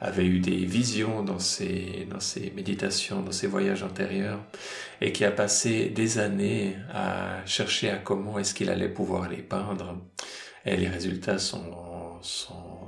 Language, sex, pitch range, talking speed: French, male, 95-110 Hz, 160 wpm